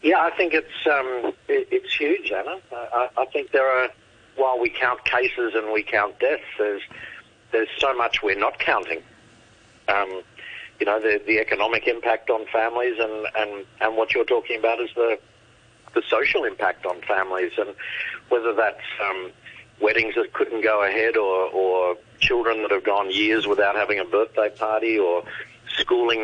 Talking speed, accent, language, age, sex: 170 wpm, Australian, English, 50-69, male